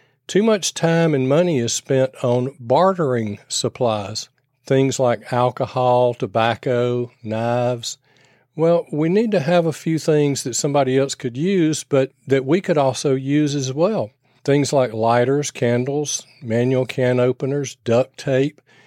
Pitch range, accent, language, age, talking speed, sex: 120-150 Hz, American, English, 40-59, 145 wpm, male